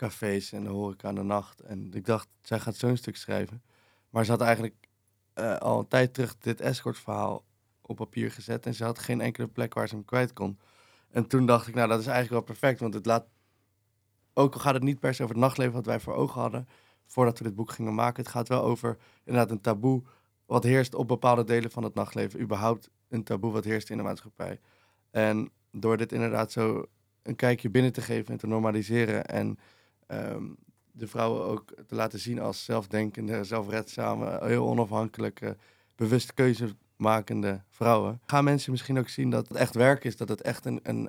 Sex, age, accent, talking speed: male, 20-39, Dutch, 205 wpm